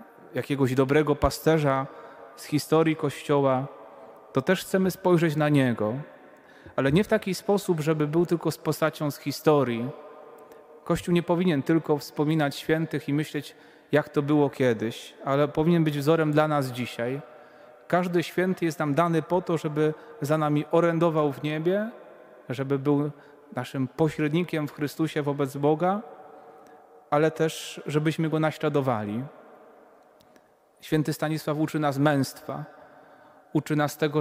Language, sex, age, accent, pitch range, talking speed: Polish, male, 30-49, native, 145-165 Hz, 135 wpm